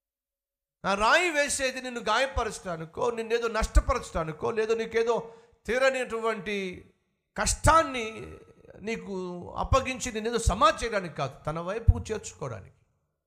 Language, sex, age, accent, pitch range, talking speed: Telugu, male, 50-69, native, 140-185 Hz, 100 wpm